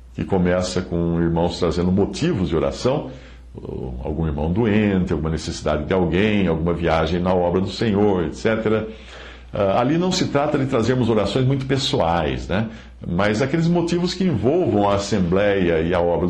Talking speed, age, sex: 155 wpm, 60-79, male